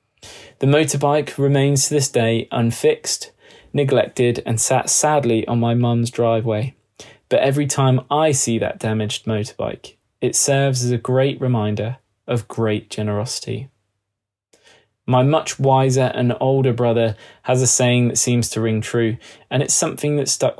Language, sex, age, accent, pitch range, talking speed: English, male, 20-39, British, 110-135 Hz, 150 wpm